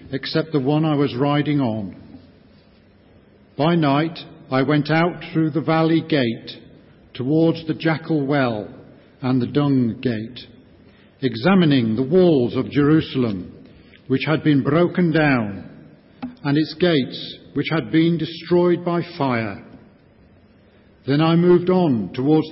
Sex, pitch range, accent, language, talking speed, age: male, 130-165 Hz, British, English, 130 wpm, 50-69